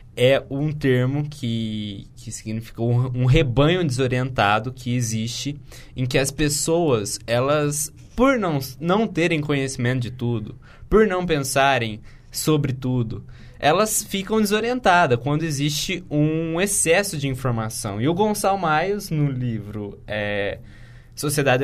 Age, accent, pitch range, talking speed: 20-39, Brazilian, 125-175 Hz, 125 wpm